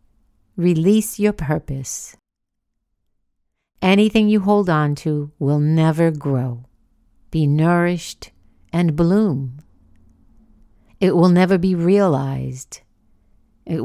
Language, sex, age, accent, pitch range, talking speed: English, female, 50-69, American, 130-175 Hz, 90 wpm